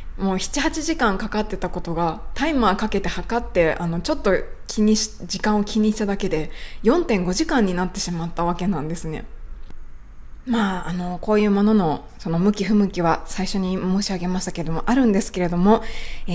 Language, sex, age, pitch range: Japanese, female, 20-39, 185-245 Hz